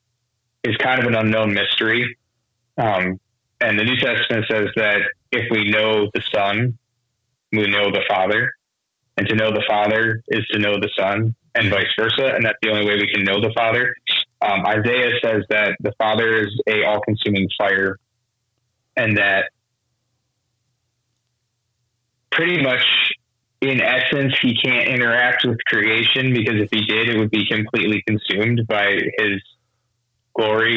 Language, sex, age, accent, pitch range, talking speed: English, male, 30-49, American, 110-120 Hz, 150 wpm